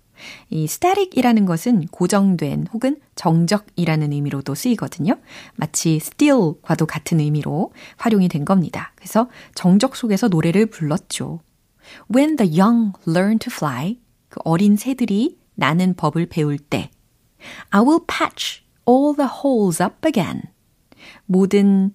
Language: Korean